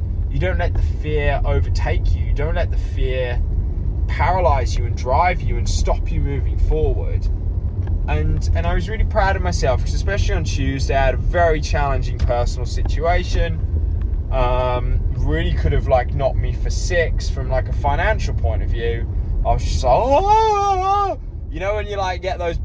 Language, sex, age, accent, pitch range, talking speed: English, male, 20-39, British, 80-95 Hz, 190 wpm